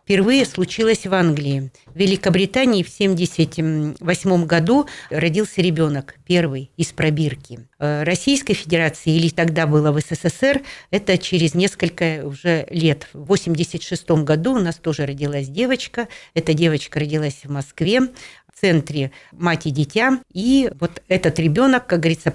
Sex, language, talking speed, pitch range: female, Russian, 135 wpm, 150-185 Hz